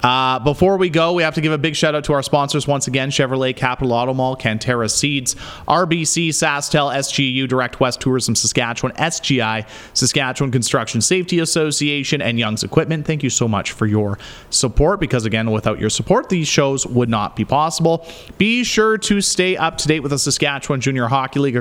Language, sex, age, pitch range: English, male, 30-49, 115-155 Hz